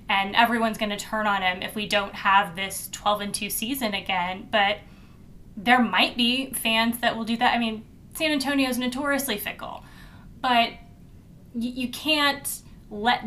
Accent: American